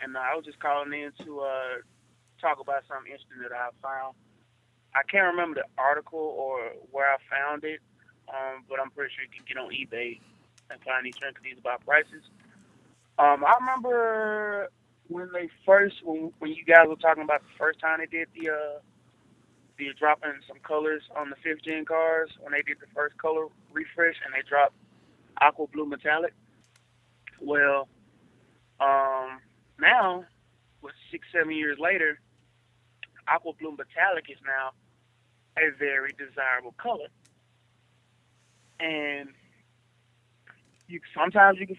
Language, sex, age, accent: English, male, 20-39, American